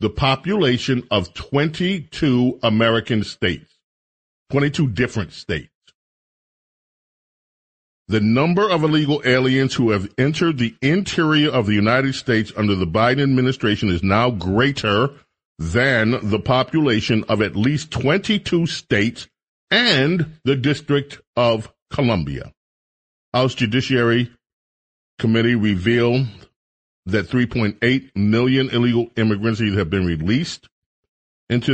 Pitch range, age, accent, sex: 105-130 Hz, 40-59, American, male